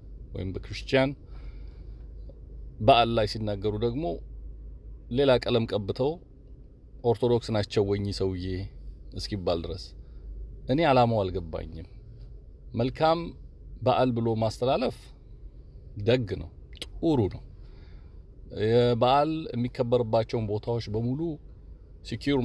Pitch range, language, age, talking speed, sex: 90-130 Hz, Amharic, 40-59, 80 wpm, male